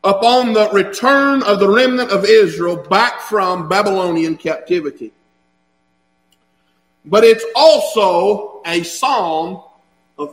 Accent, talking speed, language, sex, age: American, 105 wpm, English, male, 50-69